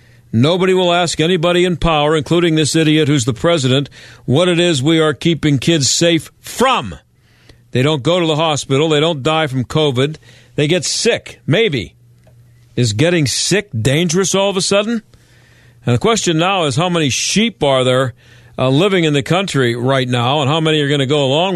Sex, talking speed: male, 190 wpm